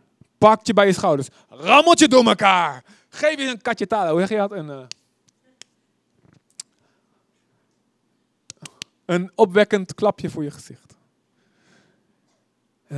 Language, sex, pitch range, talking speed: Dutch, male, 145-210 Hz, 120 wpm